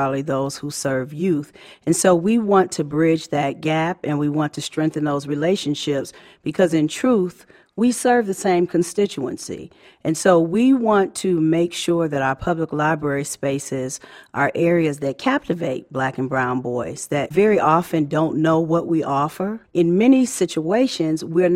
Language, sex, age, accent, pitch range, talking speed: English, female, 40-59, American, 150-185 Hz, 165 wpm